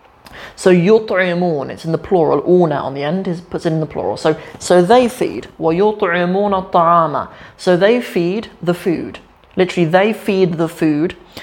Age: 30-49